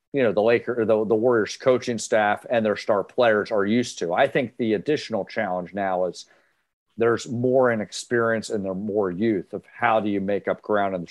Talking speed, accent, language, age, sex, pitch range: 210 wpm, American, English, 50-69, male, 110-135 Hz